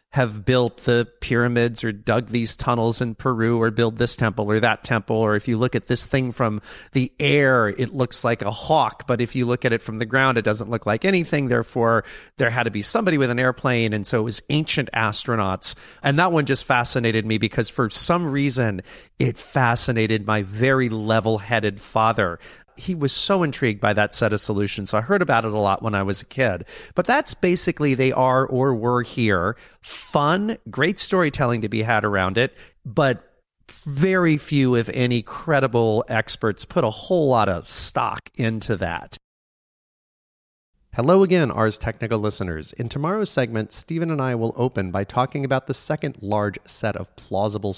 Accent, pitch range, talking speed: American, 110-140 Hz, 190 wpm